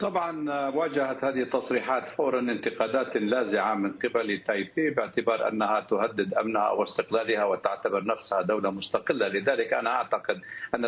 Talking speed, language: 130 wpm, Arabic